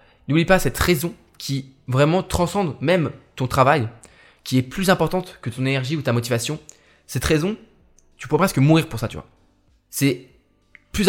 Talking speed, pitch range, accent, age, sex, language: 175 wpm, 115-145 Hz, French, 20-39, male, French